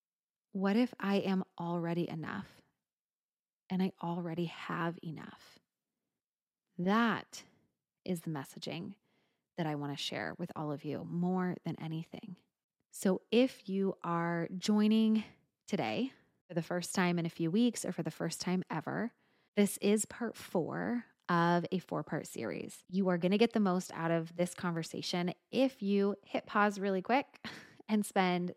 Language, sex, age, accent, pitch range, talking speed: English, female, 20-39, American, 170-210 Hz, 160 wpm